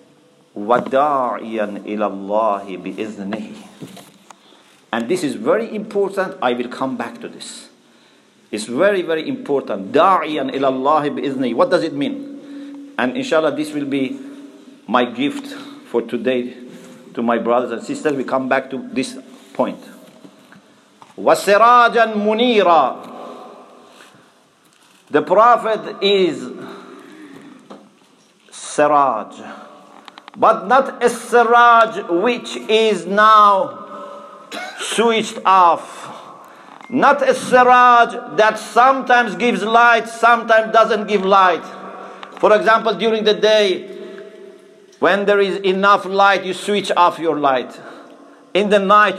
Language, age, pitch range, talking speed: English, 50-69, 160-240 Hz, 105 wpm